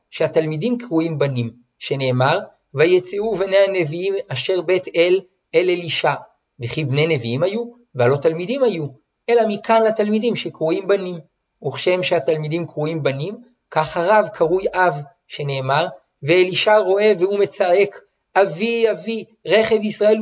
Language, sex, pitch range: Hebrew, male, 155-210 Hz